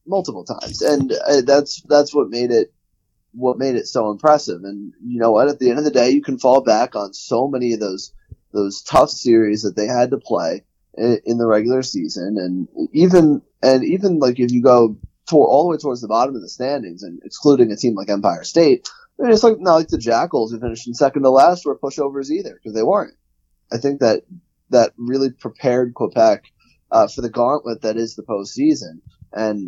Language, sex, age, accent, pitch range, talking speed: English, male, 20-39, American, 105-140 Hz, 215 wpm